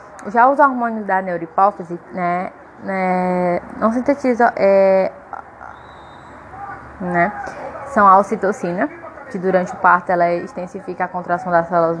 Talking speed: 120 wpm